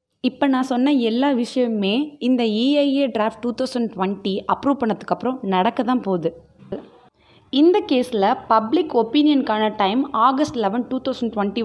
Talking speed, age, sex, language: 135 wpm, 20-39, female, Tamil